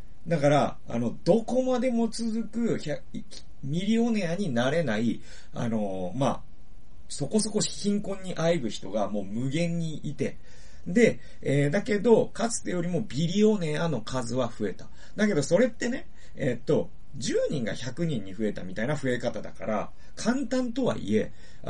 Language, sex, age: Japanese, male, 40-59